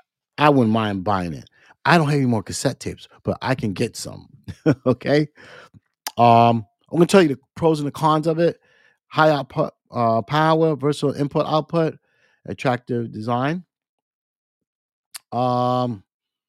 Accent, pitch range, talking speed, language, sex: American, 110-145 Hz, 145 wpm, English, male